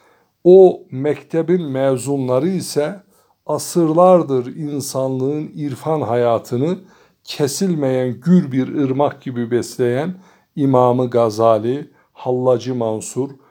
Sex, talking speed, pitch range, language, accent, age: male, 80 wpm, 125-165 Hz, Turkish, native, 60-79